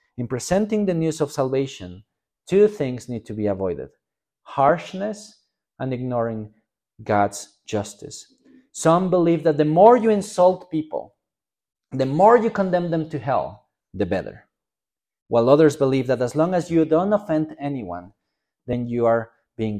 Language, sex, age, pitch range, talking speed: English, male, 40-59, 105-160 Hz, 150 wpm